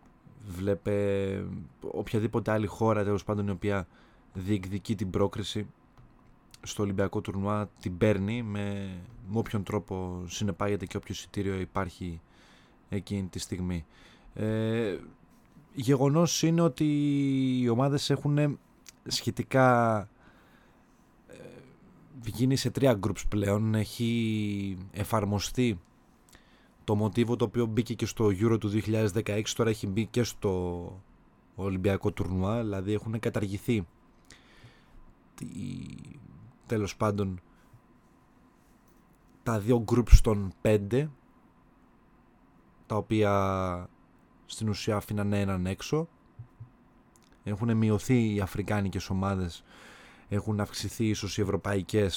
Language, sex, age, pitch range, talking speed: Greek, male, 20-39, 100-115 Hz, 100 wpm